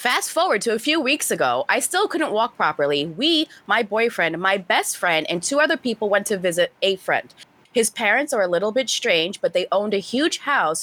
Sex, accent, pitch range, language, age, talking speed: female, American, 175-245 Hz, English, 20-39, 220 wpm